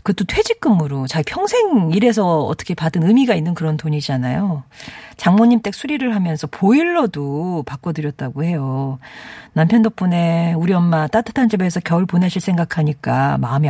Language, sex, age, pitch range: Korean, female, 40-59, 150-220 Hz